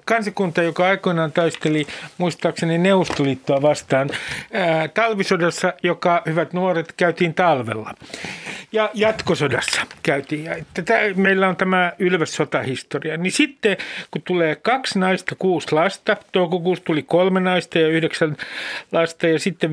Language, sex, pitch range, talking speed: Finnish, male, 150-200 Hz, 125 wpm